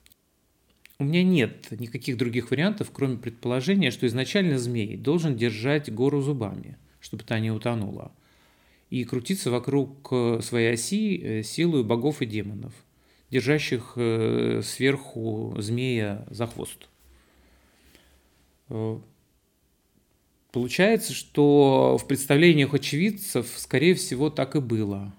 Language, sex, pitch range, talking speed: Russian, male, 110-140 Hz, 100 wpm